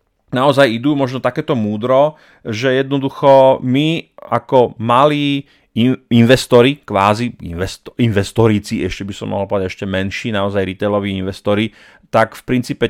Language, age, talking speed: Slovak, 30-49, 120 wpm